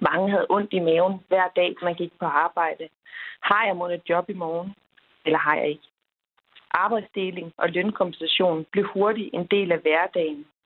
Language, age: Danish, 30-49